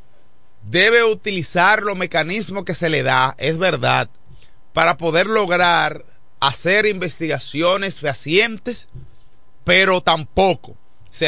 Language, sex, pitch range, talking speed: Spanish, male, 130-185 Hz, 100 wpm